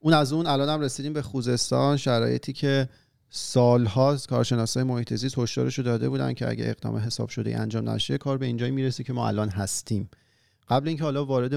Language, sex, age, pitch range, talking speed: Persian, male, 40-59, 105-125 Hz, 185 wpm